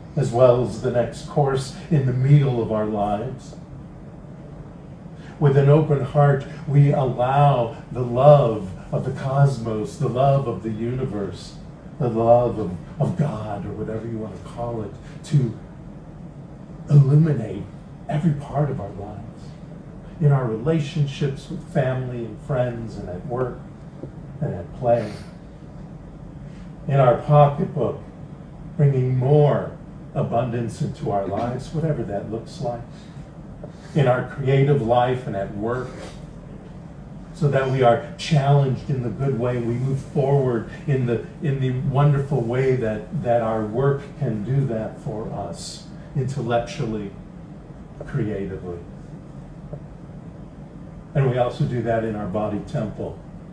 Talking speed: 130 wpm